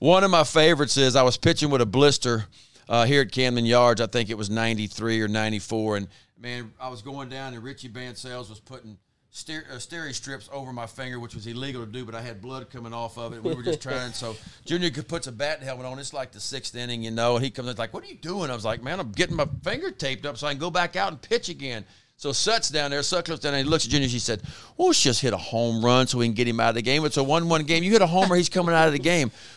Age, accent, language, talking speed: 40-59, American, English, 295 wpm